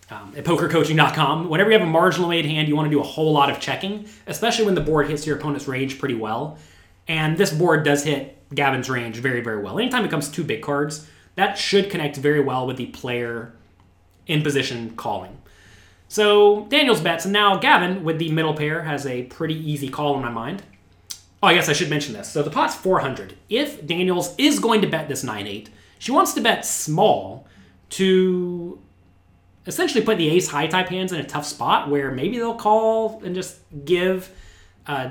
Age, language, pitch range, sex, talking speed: 30-49, English, 130-185 Hz, male, 200 wpm